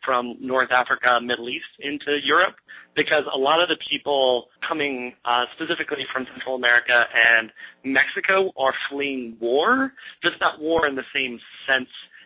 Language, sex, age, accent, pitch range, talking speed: English, male, 30-49, American, 120-145 Hz, 150 wpm